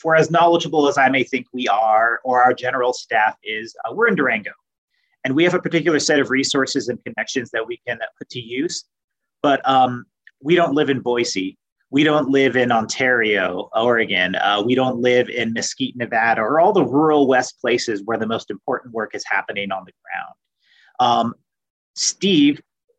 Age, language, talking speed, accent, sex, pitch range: 30-49, English, 190 wpm, American, male, 120-150 Hz